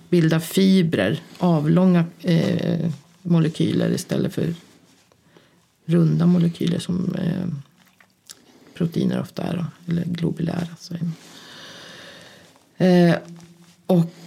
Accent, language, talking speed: native, Swedish, 90 wpm